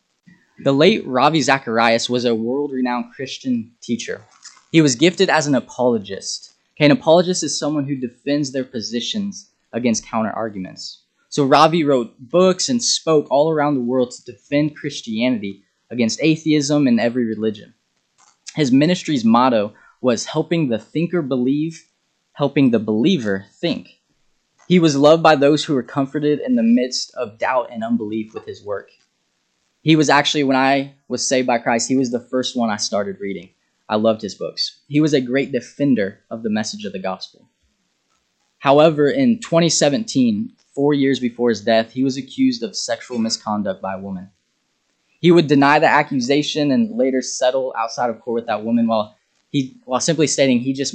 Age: 10-29